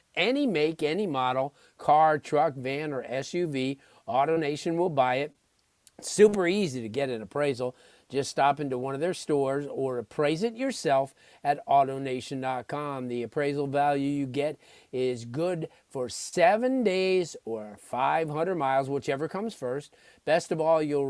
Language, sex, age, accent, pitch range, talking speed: English, male, 40-59, American, 135-170 Hz, 150 wpm